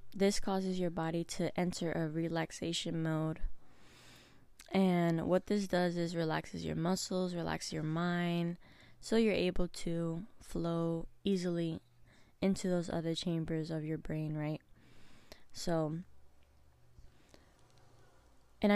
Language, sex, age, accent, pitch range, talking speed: English, female, 20-39, American, 160-185 Hz, 115 wpm